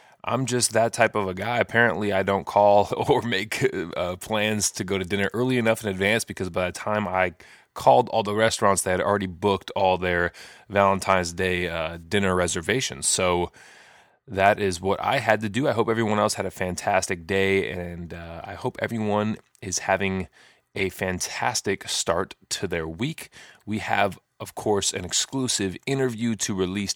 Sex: male